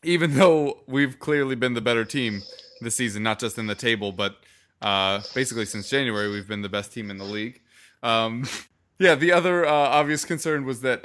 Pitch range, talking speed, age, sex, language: 105-130 Hz, 200 wpm, 20-39, male, English